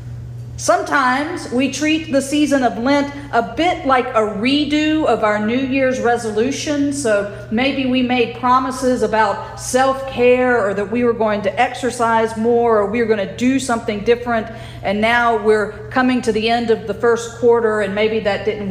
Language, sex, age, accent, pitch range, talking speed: English, female, 40-59, American, 195-245 Hz, 175 wpm